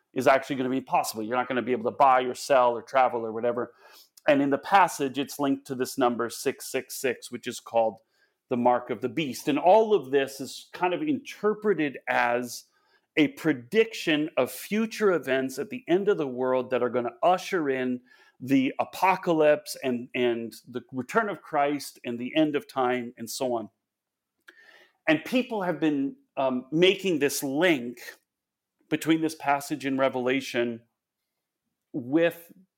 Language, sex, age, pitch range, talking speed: English, male, 40-59, 120-160 Hz, 165 wpm